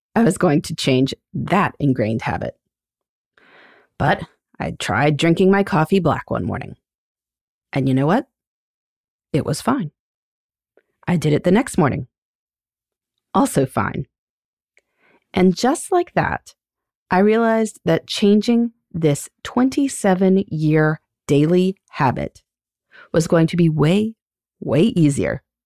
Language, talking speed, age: English, 120 wpm, 30-49